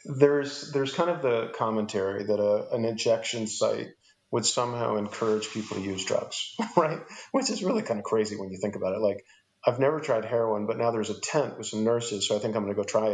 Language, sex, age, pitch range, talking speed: English, male, 40-59, 105-115 Hz, 235 wpm